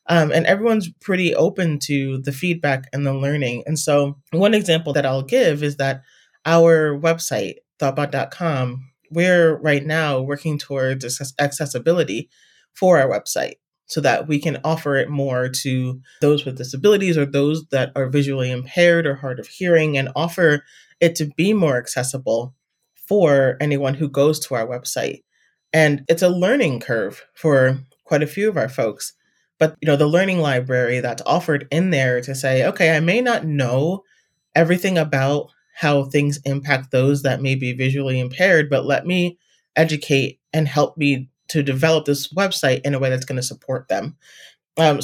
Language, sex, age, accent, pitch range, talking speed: English, male, 30-49, American, 135-165 Hz, 170 wpm